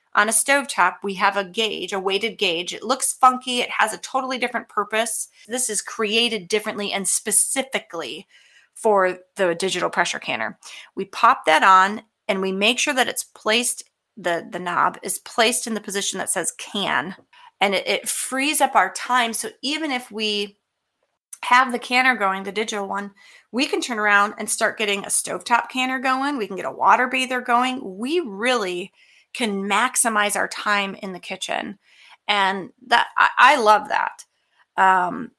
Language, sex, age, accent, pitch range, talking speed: English, female, 30-49, American, 200-255 Hz, 175 wpm